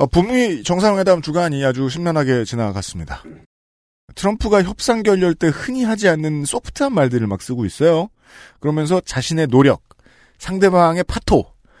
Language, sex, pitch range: Korean, male, 125-175 Hz